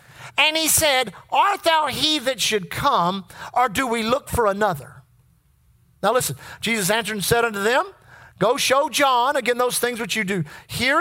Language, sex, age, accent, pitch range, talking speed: English, male, 50-69, American, 210-295 Hz, 180 wpm